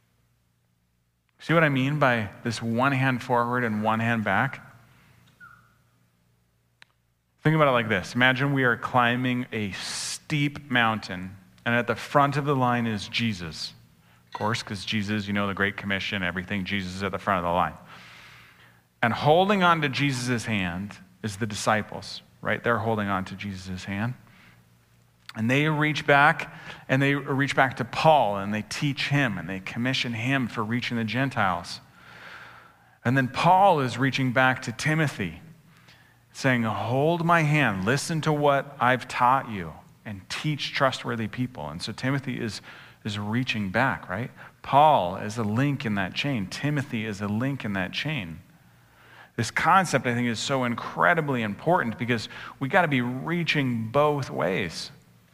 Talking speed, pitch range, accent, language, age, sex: 165 wpm, 100-135 Hz, American, English, 30-49, male